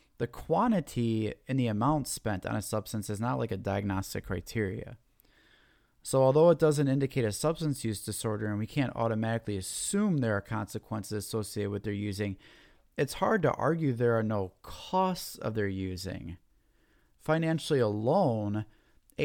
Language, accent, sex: English, American, male